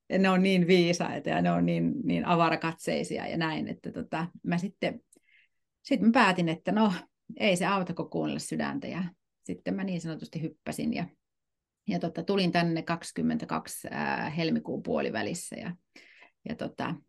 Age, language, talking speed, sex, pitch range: 30-49, Finnish, 150 wpm, female, 155-200 Hz